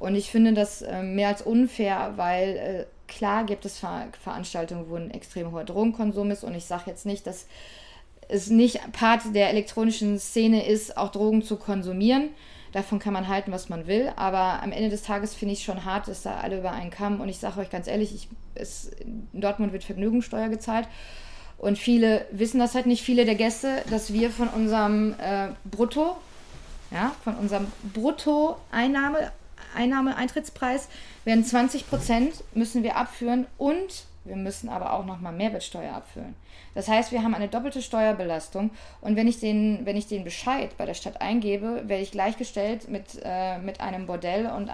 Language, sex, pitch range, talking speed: German, female, 195-235 Hz, 180 wpm